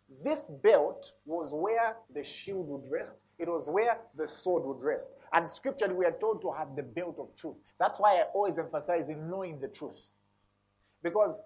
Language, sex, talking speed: English, male, 190 wpm